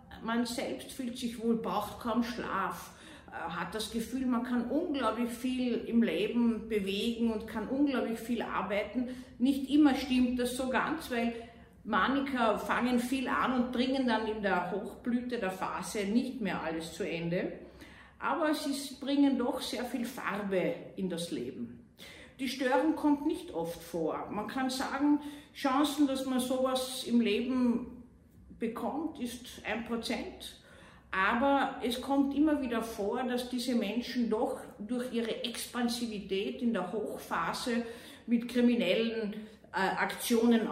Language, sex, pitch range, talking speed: German, female, 195-255 Hz, 140 wpm